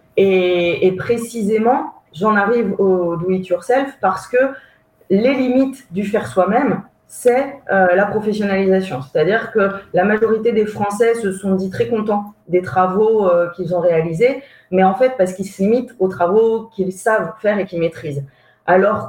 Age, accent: 30-49, French